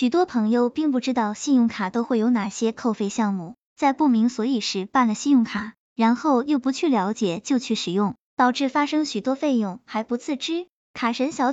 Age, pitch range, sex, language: 10-29, 220-280 Hz, male, Chinese